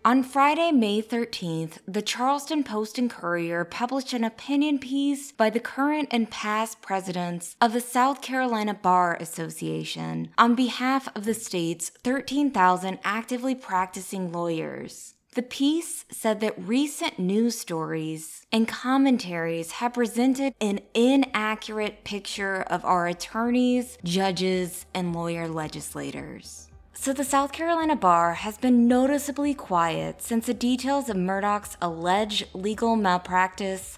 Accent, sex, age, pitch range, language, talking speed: American, female, 20-39, 180-255 Hz, English, 125 wpm